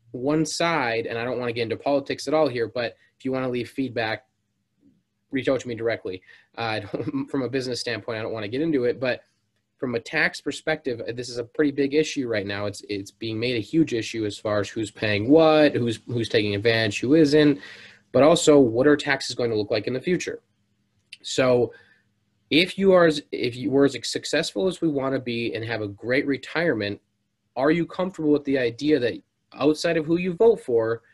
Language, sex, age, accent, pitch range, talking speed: English, male, 20-39, American, 110-145 Hz, 220 wpm